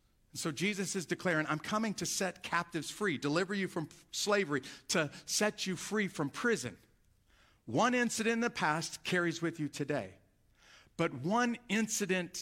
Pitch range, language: 145-195 Hz, English